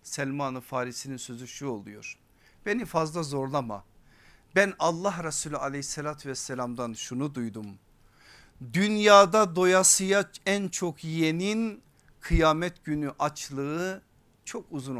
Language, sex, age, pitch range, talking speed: Turkish, male, 50-69, 140-200 Hz, 100 wpm